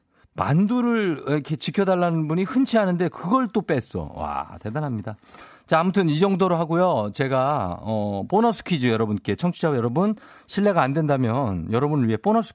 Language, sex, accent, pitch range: Korean, male, native, 120-175 Hz